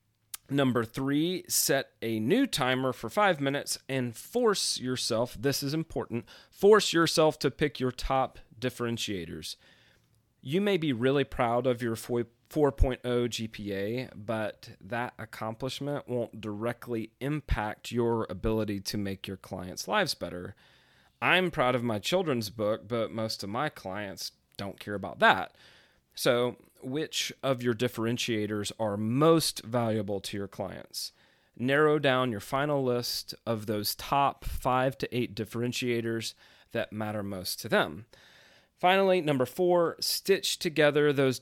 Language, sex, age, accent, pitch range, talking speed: English, male, 30-49, American, 110-140 Hz, 135 wpm